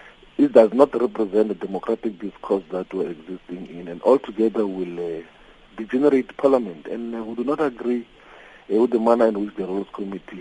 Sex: male